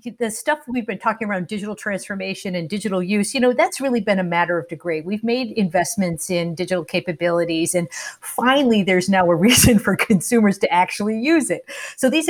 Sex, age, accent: female, 50-69, American